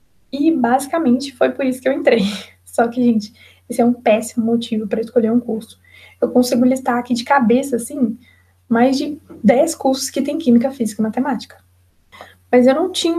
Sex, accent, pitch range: female, Brazilian, 230-280 Hz